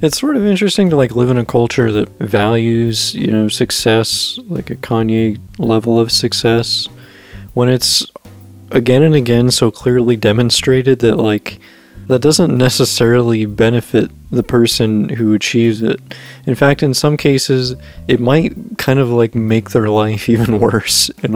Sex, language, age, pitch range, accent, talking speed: male, English, 20-39, 105-125 Hz, American, 155 wpm